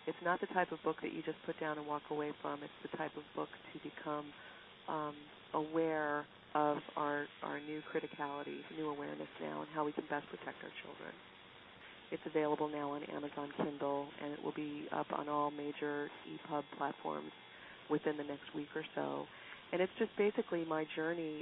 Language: English